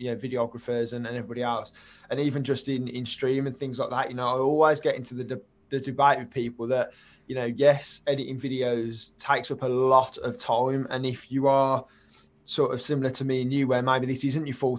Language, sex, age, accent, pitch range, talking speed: English, male, 20-39, British, 130-145 Hz, 240 wpm